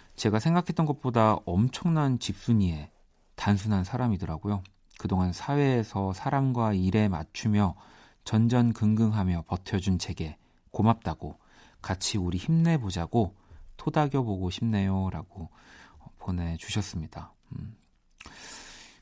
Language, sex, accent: Korean, male, native